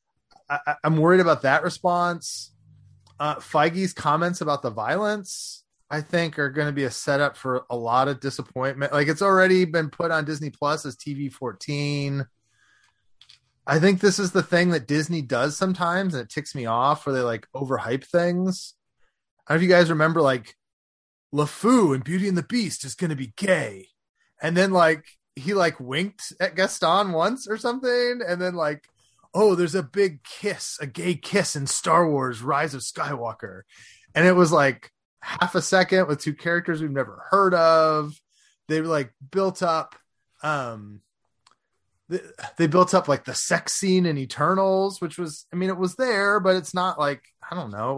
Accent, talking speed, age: American, 185 wpm, 20-39